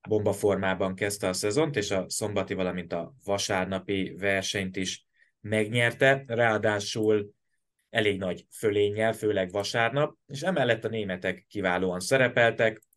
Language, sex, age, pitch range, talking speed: Hungarian, male, 20-39, 100-115 Hz, 115 wpm